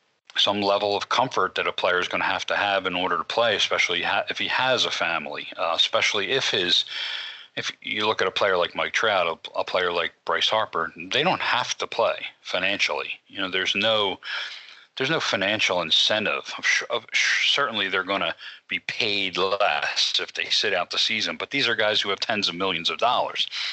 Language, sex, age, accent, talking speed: English, male, 40-59, American, 200 wpm